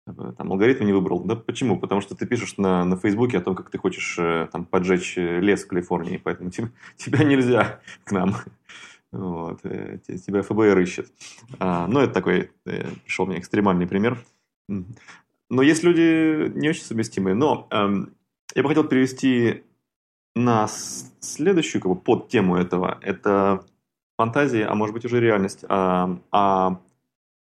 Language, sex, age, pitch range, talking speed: Russian, male, 30-49, 90-105 Hz, 150 wpm